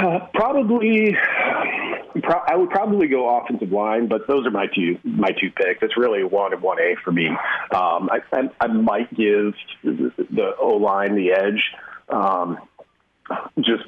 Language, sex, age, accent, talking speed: English, male, 40-59, American, 170 wpm